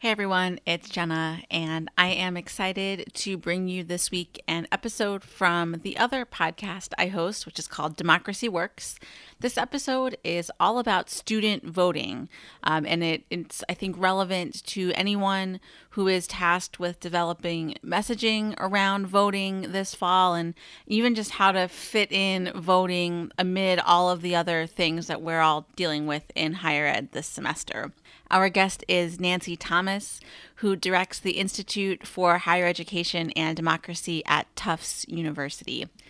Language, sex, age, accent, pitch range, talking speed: English, female, 30-49, American, 170-200 Hz, 155 wpm